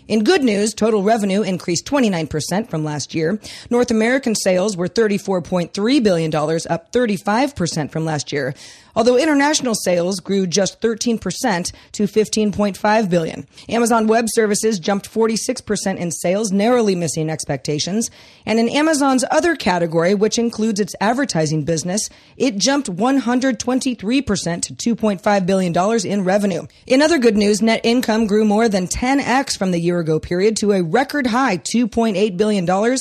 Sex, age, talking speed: female, 40-59, 140 wpm